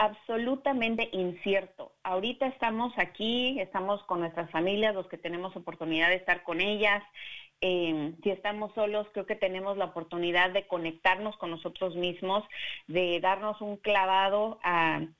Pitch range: 175-205 Hz